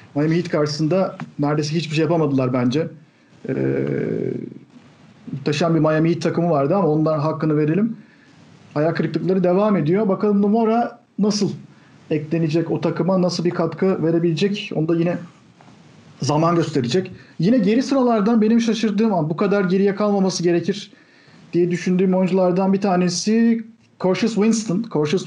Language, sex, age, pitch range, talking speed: Turkish, male, 50-69, 160-200 Hz, 135 wpm